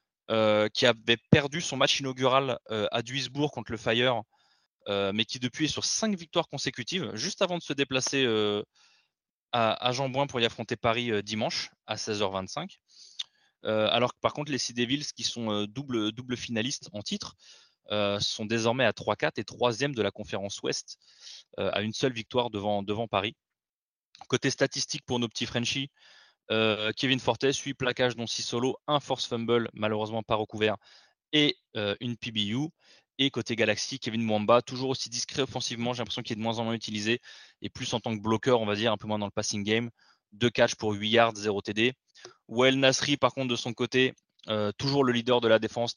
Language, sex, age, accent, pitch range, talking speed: French, male, 20-39, French, 110-130 Hz, 200 wpm